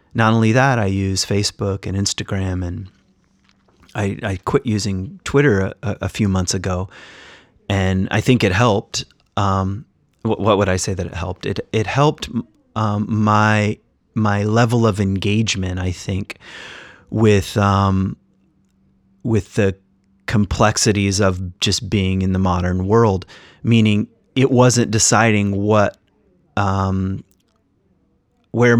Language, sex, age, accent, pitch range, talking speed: English, male, 30-49, American, 95-115 Hz, 130 wpm